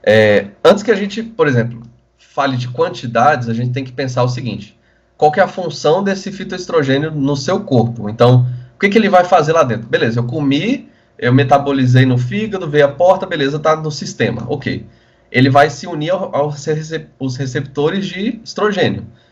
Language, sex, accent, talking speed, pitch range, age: Portuguese, male, Brazilian, 190 wpm, 125-180 Hz, 20-39